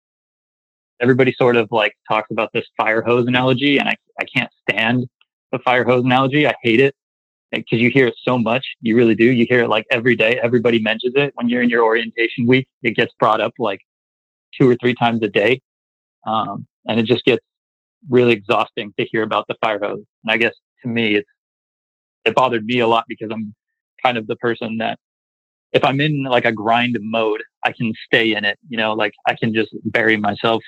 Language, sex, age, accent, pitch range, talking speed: English, male, 30-49, American, 110-125 Hz, 215 wpm